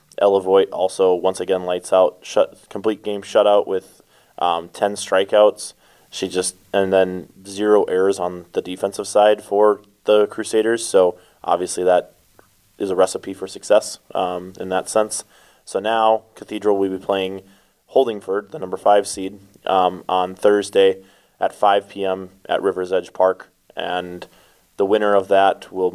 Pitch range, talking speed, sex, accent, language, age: 95-110 Hz, 150 wpm, male, American, English, 20-39